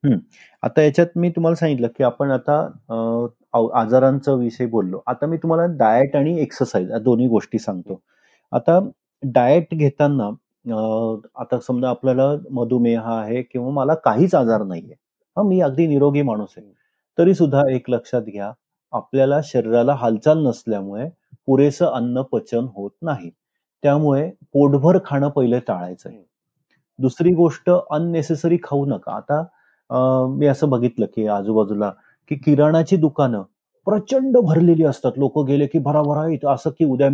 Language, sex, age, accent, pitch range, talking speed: Marathi, male, 30-49, native, 120-155 Hz, 100 wpm